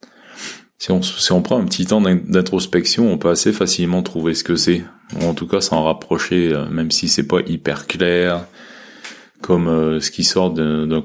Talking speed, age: 190 wpm, 20-39